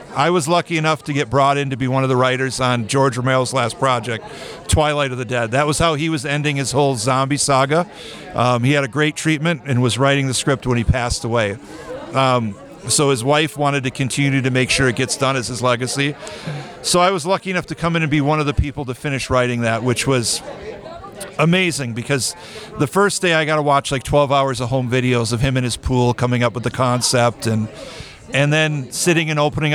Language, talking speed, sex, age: English, 230 wpm, male, 50-69